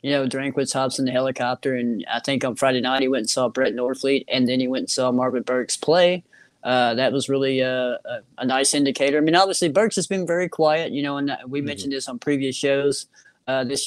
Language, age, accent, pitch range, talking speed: English, 20-39, American, 125-145 Hz, 240 wpm